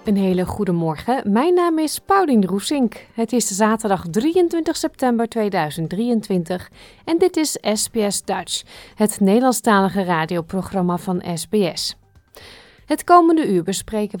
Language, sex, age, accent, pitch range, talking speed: Dutch, female, 30-49, Dutch, 185-265 Hz, 125 wpm